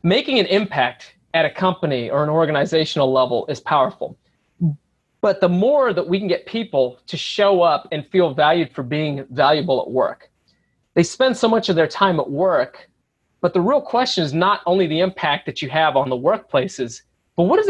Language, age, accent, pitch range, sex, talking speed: English, 30-49, American, 150-185 Hz, male, 195 wpm